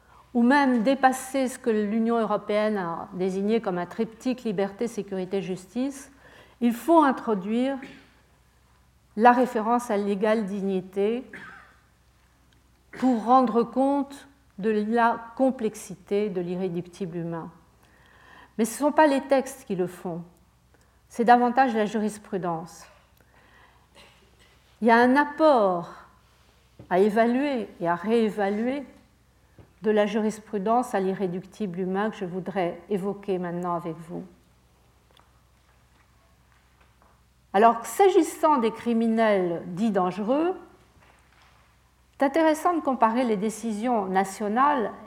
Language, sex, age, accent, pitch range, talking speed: French, female, 50-69, French, 185-245 Hz, 110 wpm